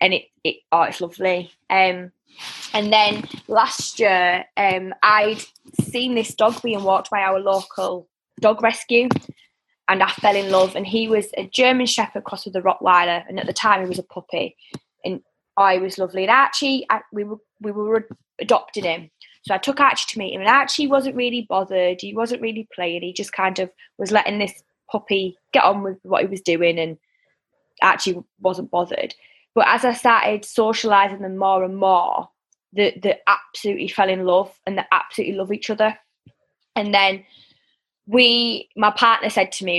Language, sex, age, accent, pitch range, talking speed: English, female, 10-29, British, 185-215 Hz, 190 wpm